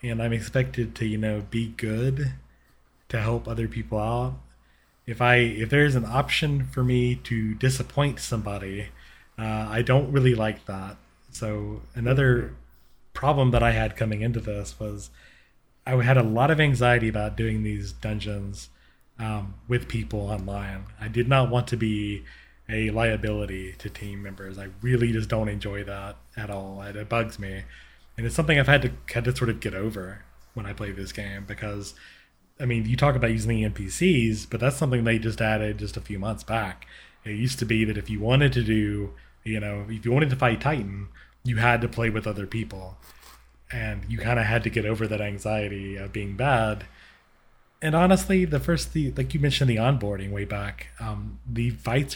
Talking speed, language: 190 wpm, English